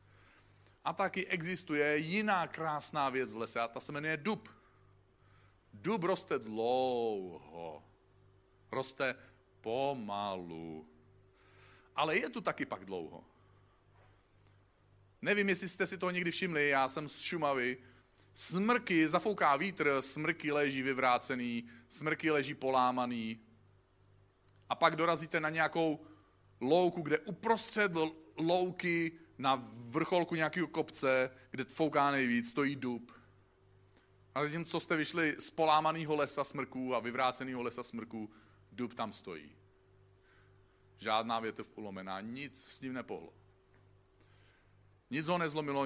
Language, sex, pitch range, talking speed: Czech, male, 100-160 Hz, 115 wpm